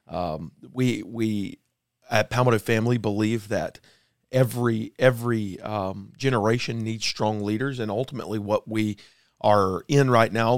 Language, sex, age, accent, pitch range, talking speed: English, male, 40-59, American, 110-130 Hz, 130 wpm